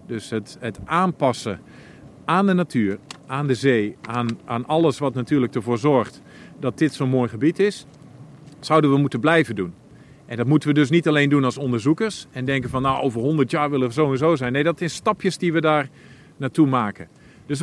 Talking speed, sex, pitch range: 200 wpm, male, 120-160 Hz